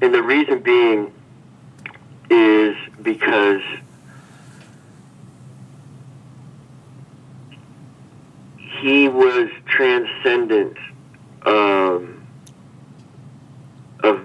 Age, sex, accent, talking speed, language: 50-69, male, American, 45 wpm, English